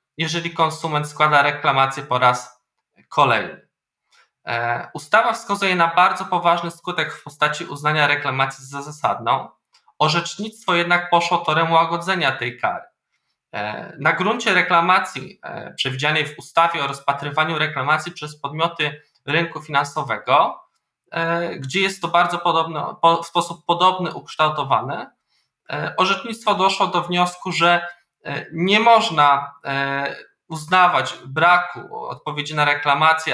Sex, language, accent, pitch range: male, Polish, native, 150-175 Hz